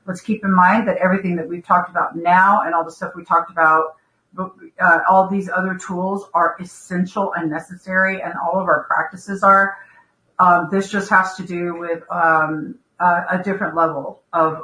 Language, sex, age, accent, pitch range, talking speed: English, female, 50-69, American, 165-200 Hz, 190 wpm